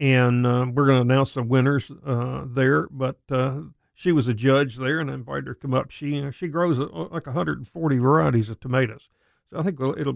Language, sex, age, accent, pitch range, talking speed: English, male, 50-69, American, 130-160 Hz, 230 wpm